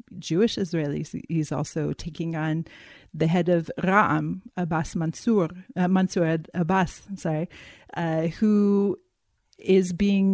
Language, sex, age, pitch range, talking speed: English, female, 40-59, 160-195 Hz, 110 wpm